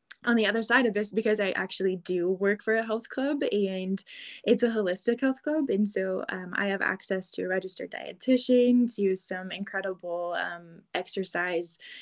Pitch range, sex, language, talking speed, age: 185-230 Hz, female, English, 180 wpm, 10-29